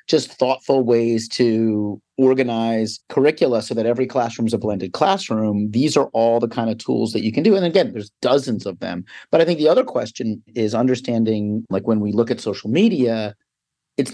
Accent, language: American, English